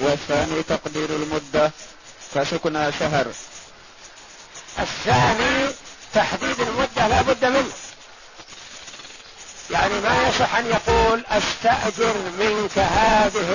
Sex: male